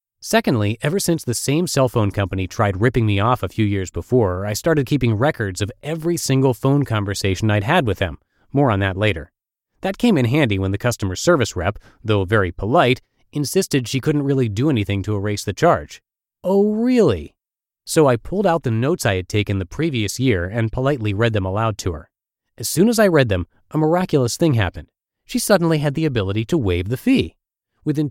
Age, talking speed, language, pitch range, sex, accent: 30-49, 205 wpm, English, 105-150 Hz, male, American